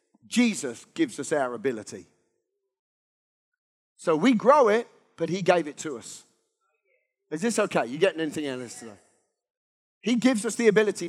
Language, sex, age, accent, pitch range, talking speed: English, male, 40-59, British, 185-270 Hz, 160 wpm